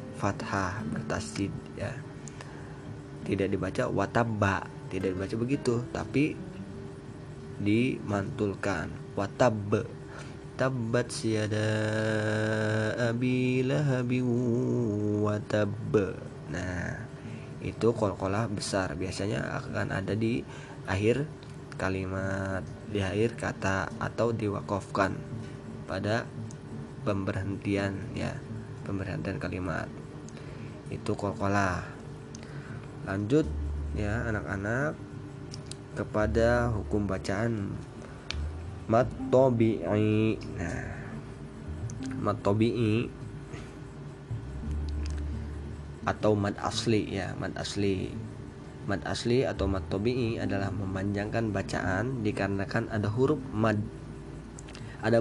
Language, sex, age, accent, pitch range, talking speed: Indonesian, male, 20-39, native, 95-125 Hz, 75 wpm